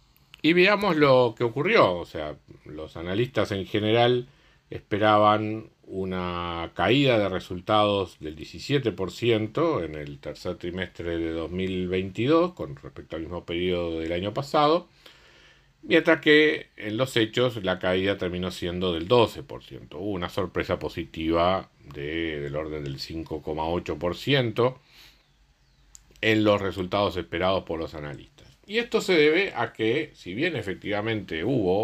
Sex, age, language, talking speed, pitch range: male, 50-69, Spanish, 130 wpm, 80-110 Hz